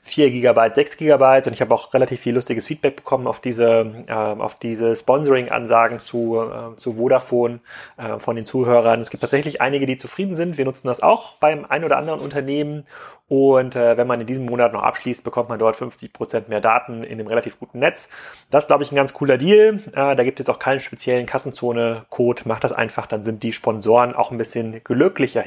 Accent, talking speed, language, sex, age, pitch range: German, 210 wpm, German, male, 30-49, 110-130 Hz